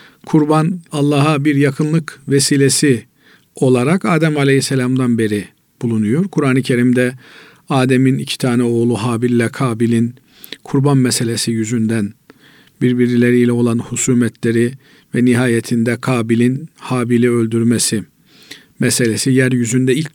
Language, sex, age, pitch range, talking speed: Turkish, male, 50-69, 120-150 Hz, 100 wpm